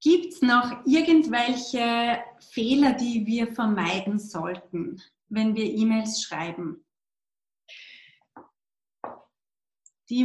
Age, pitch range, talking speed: 30-49, 220-270 Hz, 80 wpm